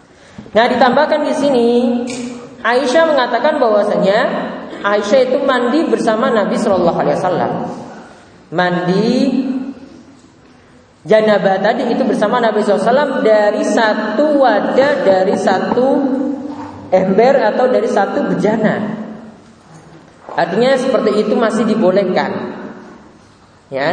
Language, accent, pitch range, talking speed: Romanian, Indonesian, 195-260 Hz, 90 wpm